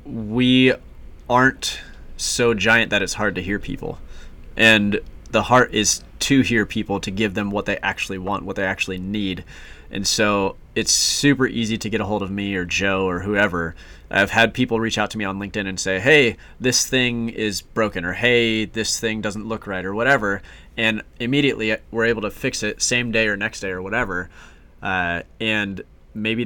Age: 20-39